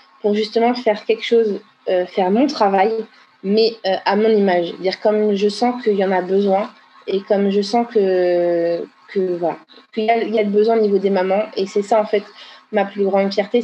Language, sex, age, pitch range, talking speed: French, female, 20-39, 195-225 Hz, 225 wpm